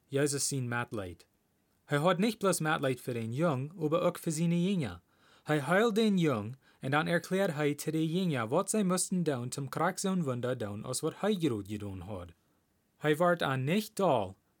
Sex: male